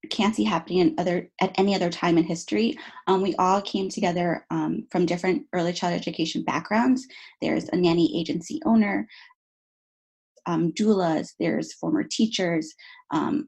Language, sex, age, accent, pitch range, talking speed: English, female, 20-39, American, 170-225 Hz, 150 wpm